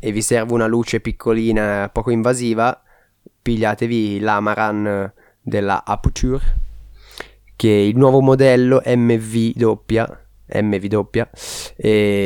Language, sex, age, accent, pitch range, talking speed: Italian, male, 20-39, native, 105-125 Hz, 110 wpm